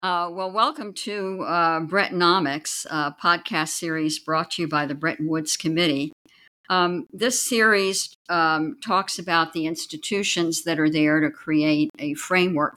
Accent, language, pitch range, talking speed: American, English, 145-170 Hz, 145 wpm